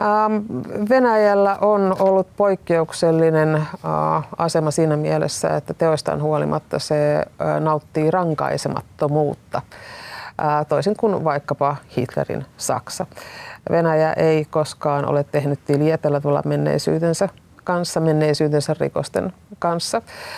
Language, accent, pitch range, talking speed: Finnish, native, 150-190 Hz, 80 wpm